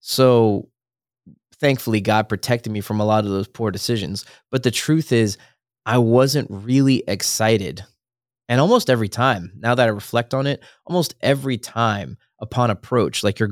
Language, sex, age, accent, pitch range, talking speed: English, male, 20-39, American, 110-125 Hz, 165 wpm